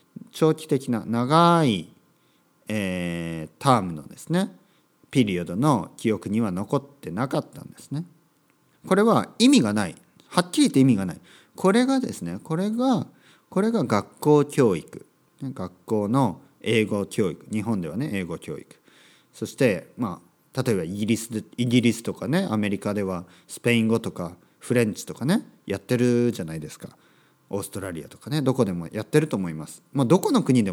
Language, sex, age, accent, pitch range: Japanese, male, 40-59, native, 100-150 Hz